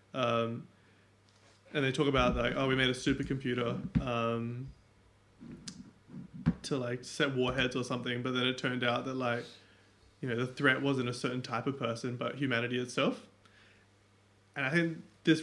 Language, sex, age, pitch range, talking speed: English, male, 20-39, 115-135 Hz, 160 wpm